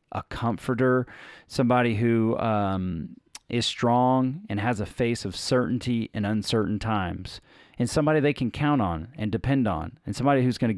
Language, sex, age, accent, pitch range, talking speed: English, male, 40-59, American, 100-120 Hz, 165 wpm